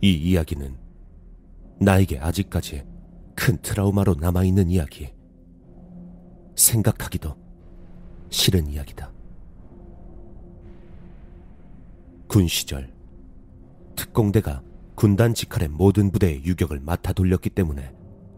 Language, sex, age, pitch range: Korean, male, 40-59, 80-100 Hz